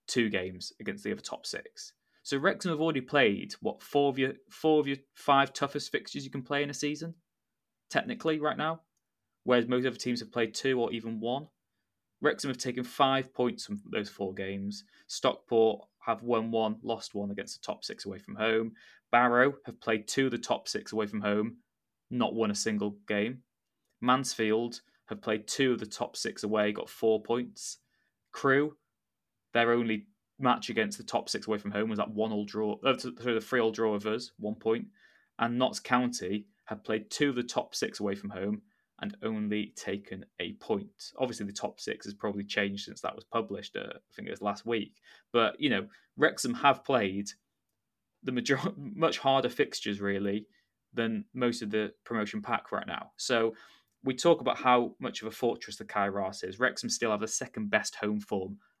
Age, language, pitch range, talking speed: 20-39, English, 105-135 Hz, 195 wpm